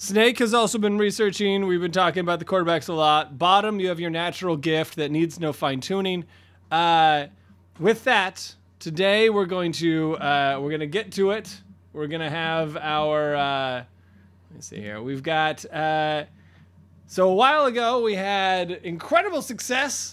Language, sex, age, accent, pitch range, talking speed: English, male, 20-39, American, 150-210 Hz, 170 wpm